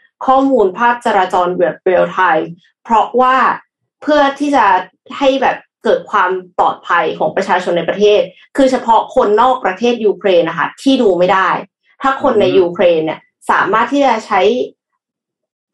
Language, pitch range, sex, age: Thai, 185-255 Hz, female, 20-39